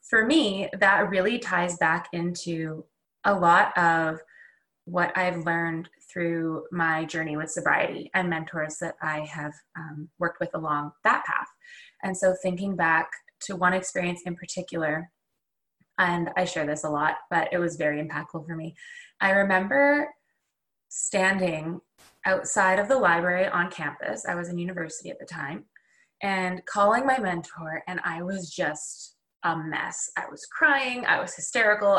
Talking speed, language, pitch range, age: 155 wpm, English, 170-230 Hz, 20-39